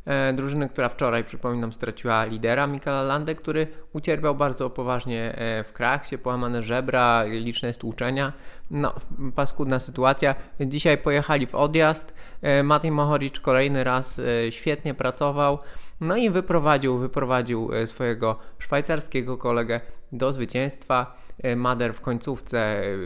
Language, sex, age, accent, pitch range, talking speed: Polish, male, 20-39, native, 120-145 Hz, 110 wpm